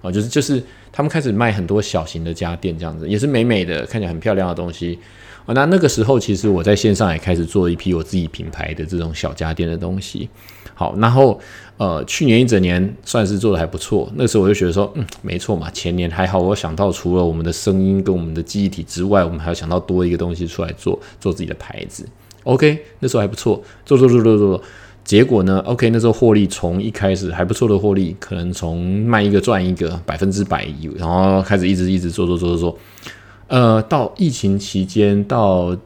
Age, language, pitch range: 20-39, Chinese, 90-105 Hz